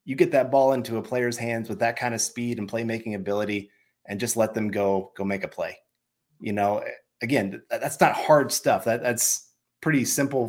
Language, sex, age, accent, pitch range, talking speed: English, male, 30-49, American, 105-125 Hz, 205 wpm